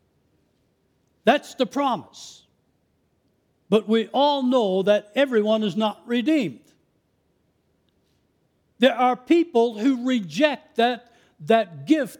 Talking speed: 100 wpm